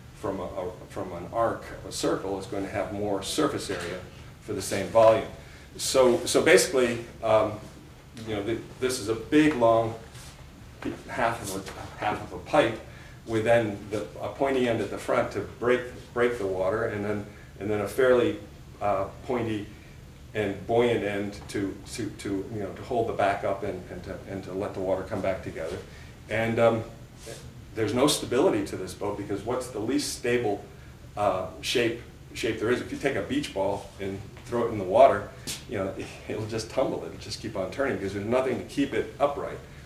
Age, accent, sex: 40-59, American, male